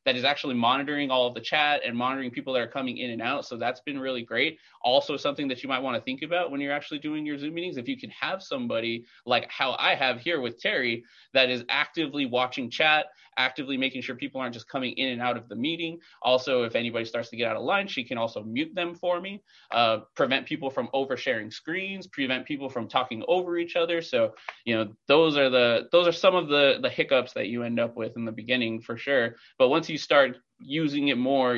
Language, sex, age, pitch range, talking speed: English, male, 20-39, 120-155 Hz, 245 wpm